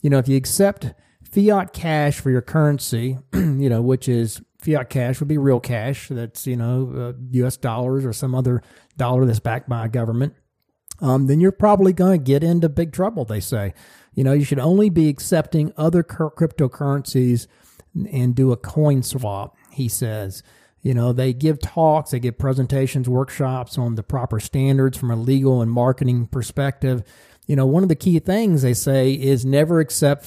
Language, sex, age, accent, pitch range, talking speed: English, male, 40-59, American, 120-145 Hz, 185 wpm